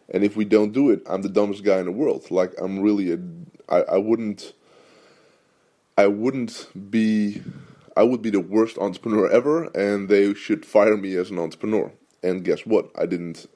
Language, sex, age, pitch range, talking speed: English, male, 20-39, 95-105 Hz, 185 wpm